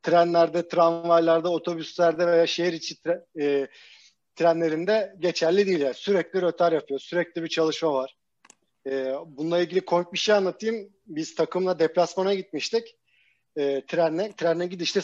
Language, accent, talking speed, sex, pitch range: Turkish, native, 135 wpm, male, 165-195 Hz